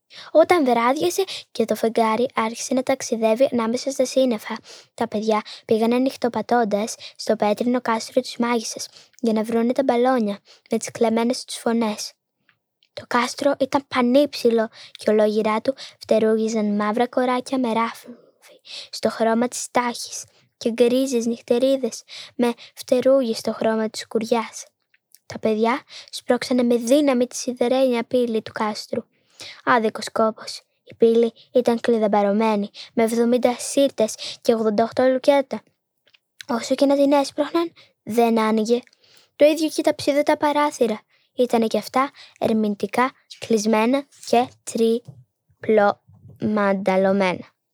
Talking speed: 120 wpm